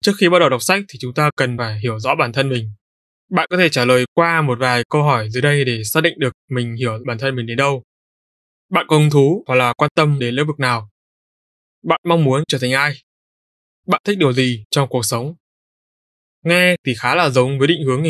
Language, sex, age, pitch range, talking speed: Vietnamese, male, 20-39, 125-160 Hz, 240 wpm